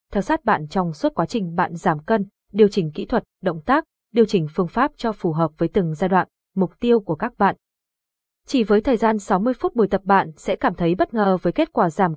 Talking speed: 245 wpm